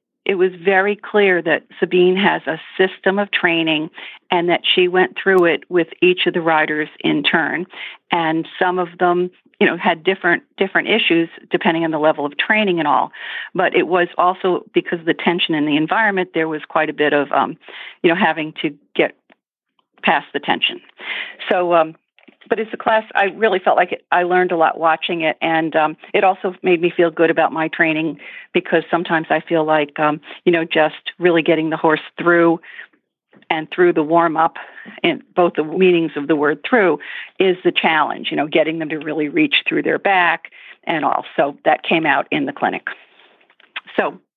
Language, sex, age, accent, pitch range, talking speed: English, female, 50-69, American, 160-185 Hz, 190 wpm